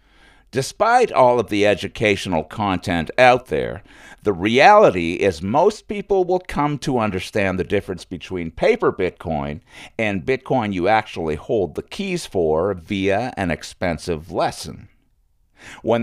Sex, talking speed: male, 130 wpm